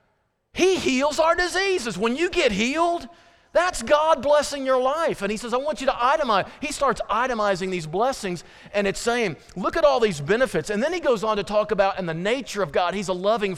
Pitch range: 175-245 Hz